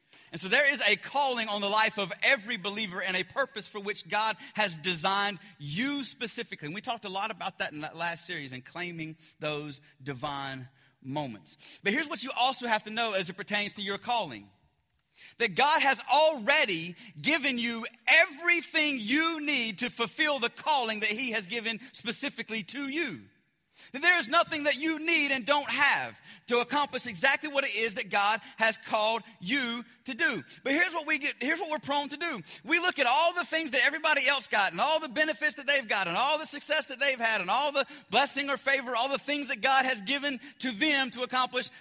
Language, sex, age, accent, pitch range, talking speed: English, male, 30-49, American, 215-300 Hz, 210 wpm